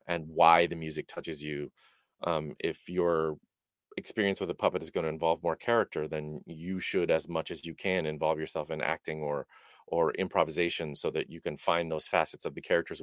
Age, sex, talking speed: 30-49, male, 205 wpm